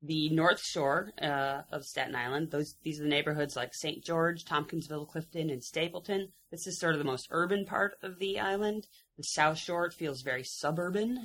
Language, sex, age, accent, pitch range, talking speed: English, female, 30-49, American, 145-195 Hz, 195 wpm